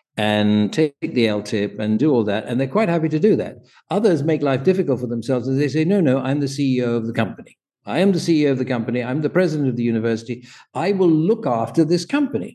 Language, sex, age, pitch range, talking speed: English, male, 60-79, 115-150 Hz, 250 wpm